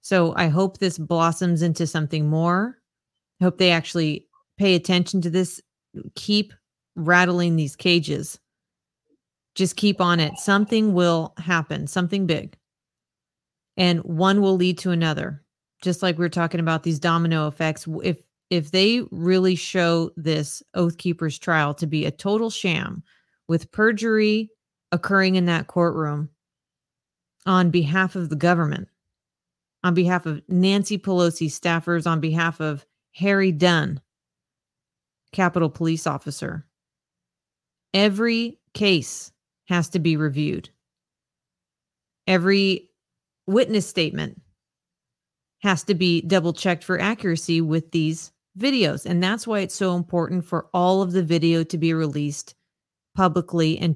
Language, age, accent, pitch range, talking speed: English, 30-49, American, 160-190 Hz, 130 wpm